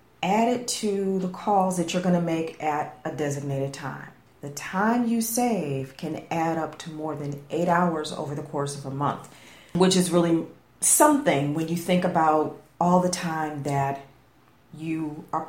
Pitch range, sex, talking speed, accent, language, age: 150-190 Hz, female, 180 wpm, American, English, 40-59